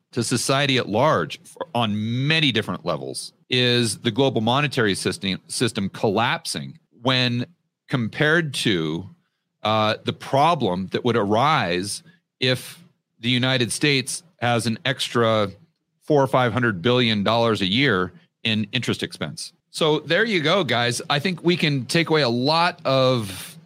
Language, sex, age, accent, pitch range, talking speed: English, male, 40-59, American, 115-160 Hz, 140 wpm